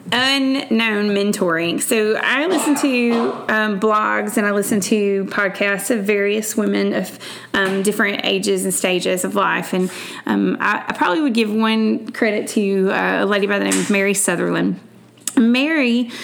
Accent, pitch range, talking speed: American, 195-245 Hz, 165 wpm